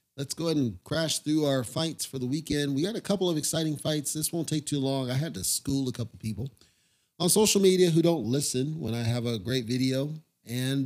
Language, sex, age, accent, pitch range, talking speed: English, male, 40-59, American, 120-150 Hz, 245 wpm